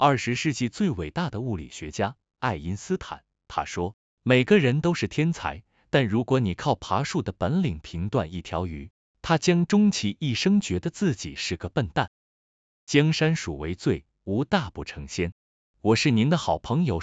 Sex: male